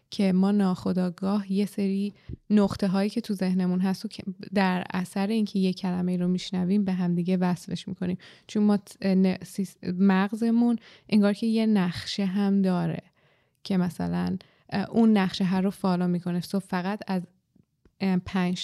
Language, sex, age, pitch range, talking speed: Persian, female, 20-39, 180-205 Hz, 150 wpm